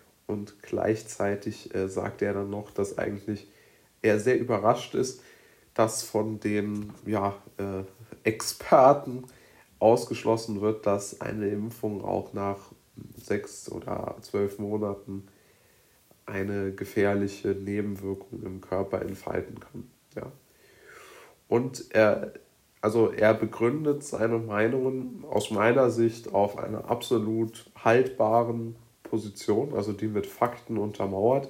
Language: German